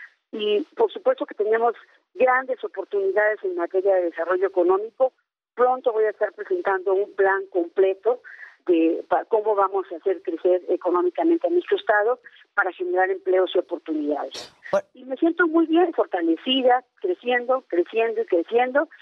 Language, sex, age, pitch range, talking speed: Spanish, female, 50-69, 185-310 Hz, 140 wpm